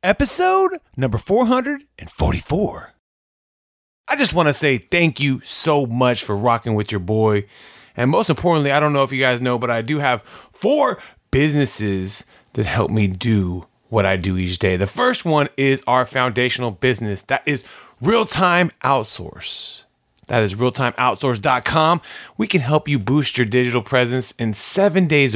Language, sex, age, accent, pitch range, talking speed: English, male, 30-49, American, 120-175 Hz, 160 wpm